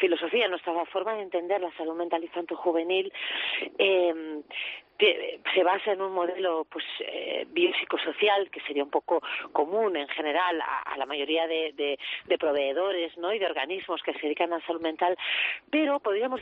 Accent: Spanish